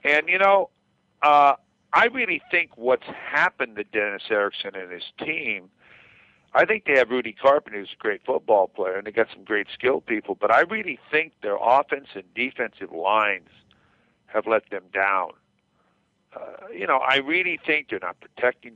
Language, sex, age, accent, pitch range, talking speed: English, male, 50-69, American, 110-150 Hz, 175 wpm